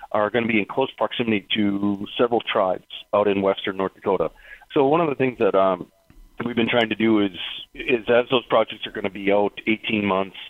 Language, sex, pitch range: English, male, 100-120 Hz